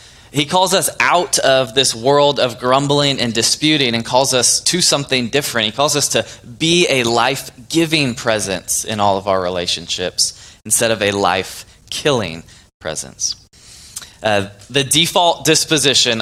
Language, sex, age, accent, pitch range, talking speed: English, male, 20-39, American, 110-145 Hz, 145 wpm